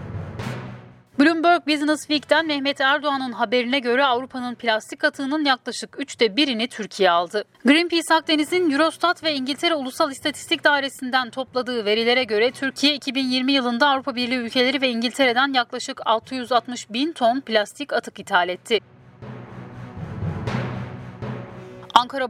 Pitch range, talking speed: 215-285 Hz, 115 wpm